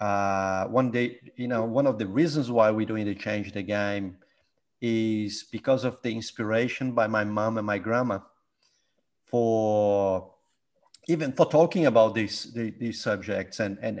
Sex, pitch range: male, 110-130 Hz